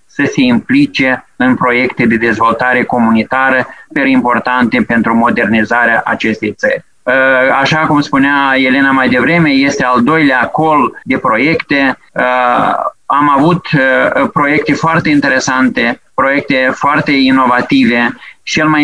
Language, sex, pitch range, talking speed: Romanian, male, 125-165 Hz, 120 wpm